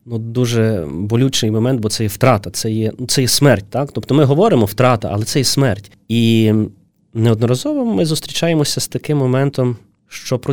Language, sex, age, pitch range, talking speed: Ukrainian, male, 20-39, 110-140 Hz, 175 wpm